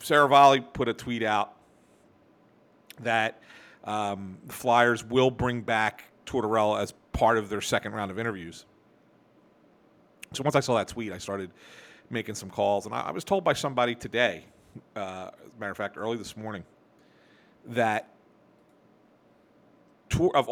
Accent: American